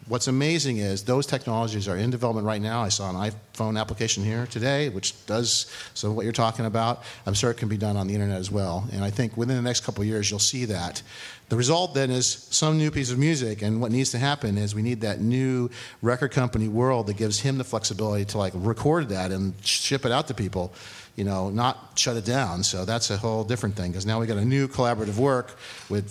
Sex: male